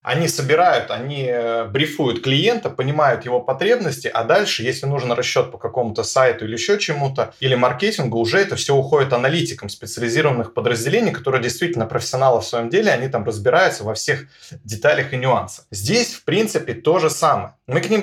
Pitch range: 120-165 Hz